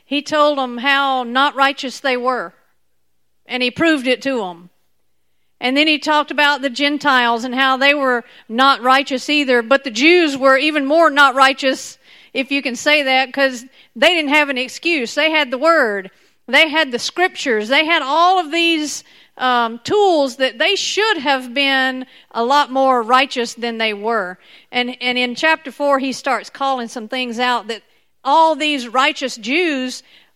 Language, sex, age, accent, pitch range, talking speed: English, female, 50-69, American, 245-300 Hz, 180 wpm